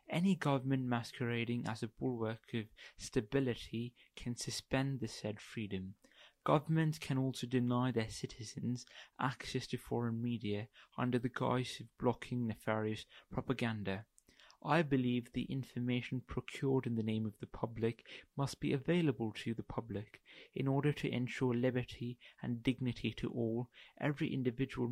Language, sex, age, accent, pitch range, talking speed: English, male, 20-39, British, 110-130 Hz, 140 wpm